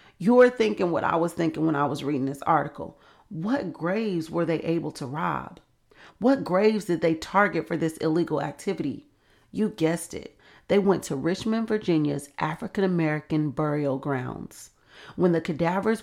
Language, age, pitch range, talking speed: English, 40-59, 155-195 Hz, 155 wpm